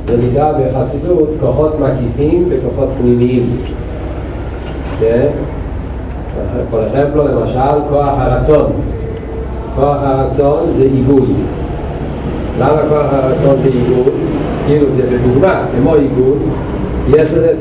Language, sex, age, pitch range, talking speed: Hebrew, male, 40-59, 120-150 Hz, 105 wpm